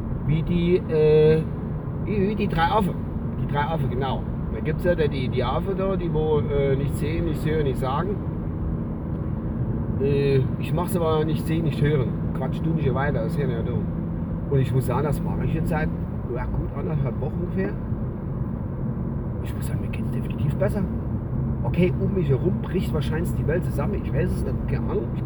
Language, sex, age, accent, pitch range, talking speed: German, male, 40-59, German, 120-160 Hz, 190 wpm